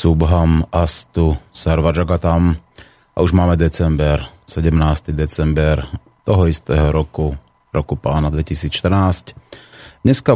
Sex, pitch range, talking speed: male, 75-90 Hz, 95 wpm